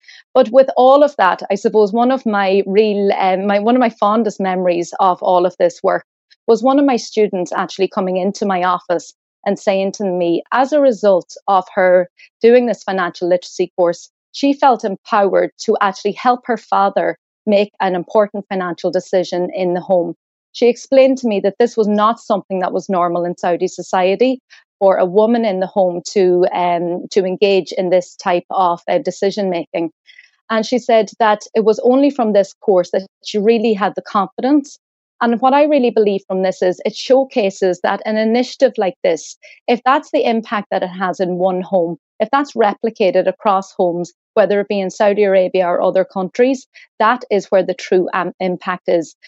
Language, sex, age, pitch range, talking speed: English, female, 30-49, 185-230 Hz, 190 wpm